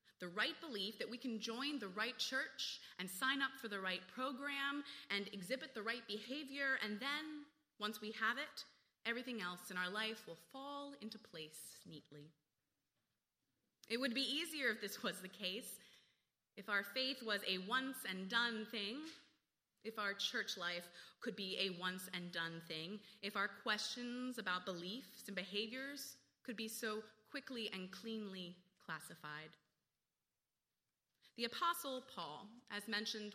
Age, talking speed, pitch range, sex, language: 20-39, 150 wpm, 195-270 Hz, female, English